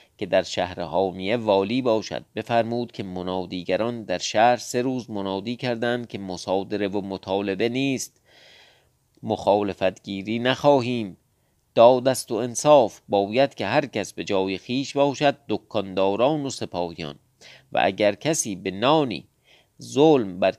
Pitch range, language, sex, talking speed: 95-125 Hz, Persian, male, 120 wpm